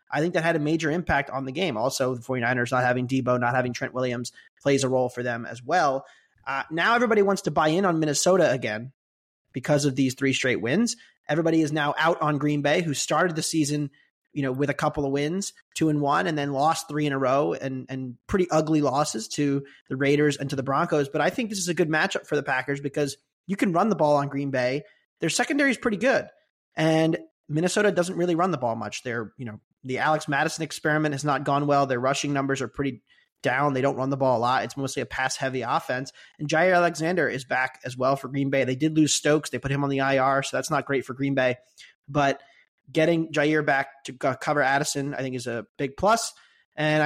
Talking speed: 235 wpm